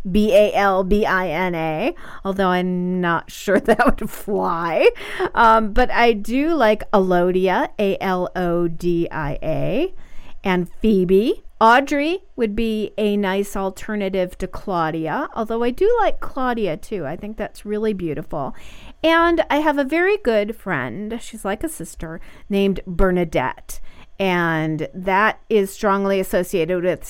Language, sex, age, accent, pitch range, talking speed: English, female, 40-59, American, 180-230 Hz, 120 wpm